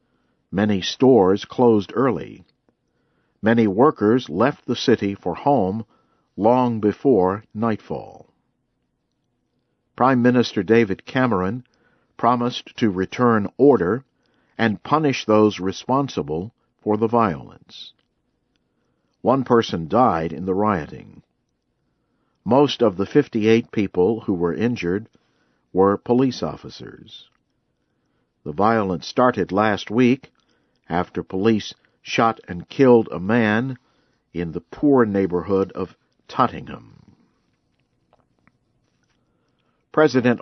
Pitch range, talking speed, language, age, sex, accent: 95-120 Hz, 95 wpm, English, 50-69, male, American